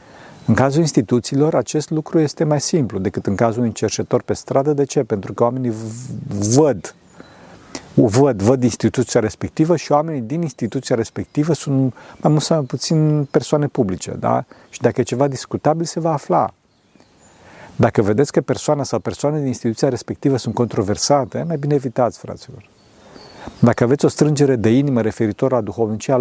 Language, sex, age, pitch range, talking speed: Romanian, male, 50-69, 120-150 Hz, 165 wpm